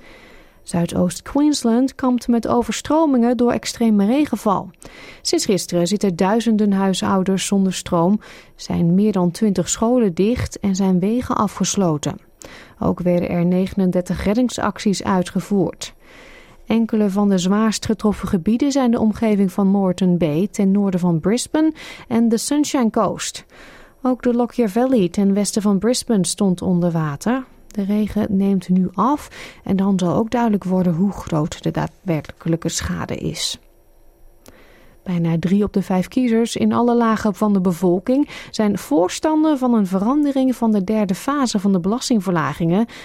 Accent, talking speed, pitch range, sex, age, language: Dutch, 145 wpm, 185-235 Hz, female, 30-49, Dutch